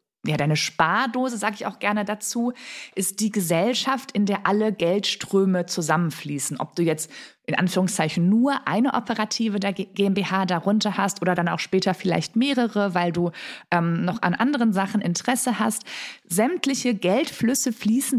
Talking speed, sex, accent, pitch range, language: 150 wpm, female, German, 170-220 Hz, German